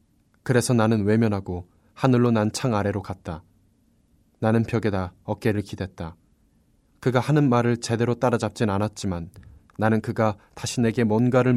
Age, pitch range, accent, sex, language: 20-39, 100-120 Hz, native, male, Korean